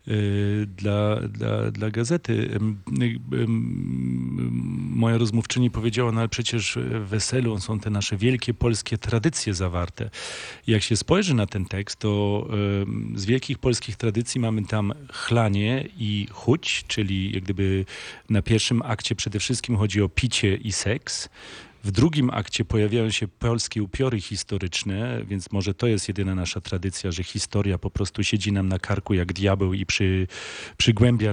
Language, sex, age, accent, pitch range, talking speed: Polish, male, 40-59, native, 95-115 Hz, 160 wpm